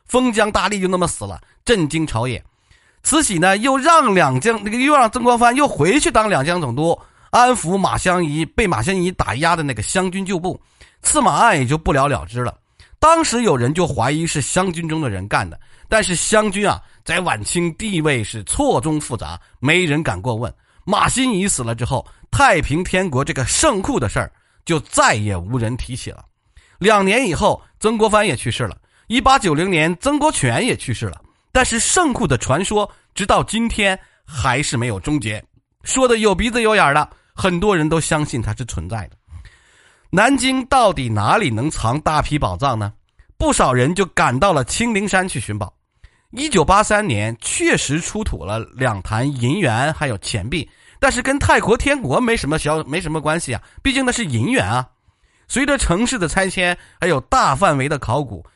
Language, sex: Chinese, male